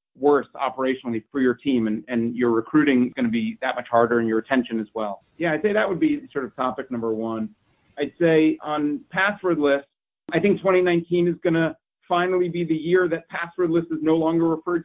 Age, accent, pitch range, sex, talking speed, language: 30-49, American, 130-170 Hz, male, 220 wpm, English